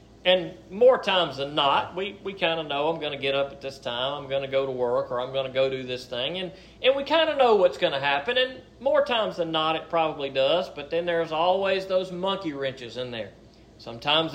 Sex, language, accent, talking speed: male, English, American, 245 wpm